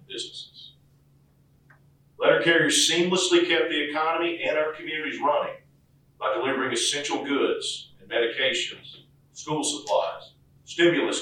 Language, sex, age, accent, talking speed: English, male, 50-69, American, 105 wpm